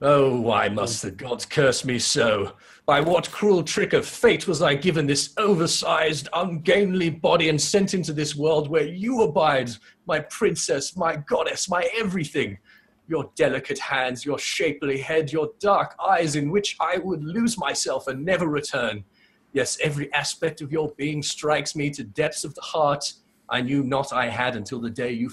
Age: 30-49